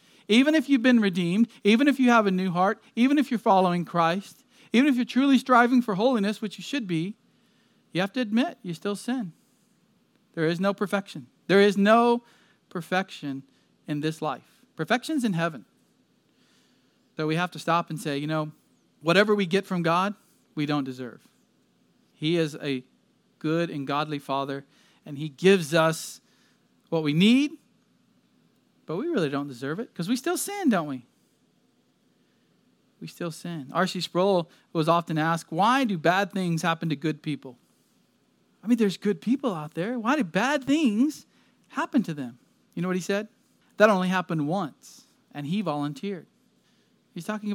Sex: male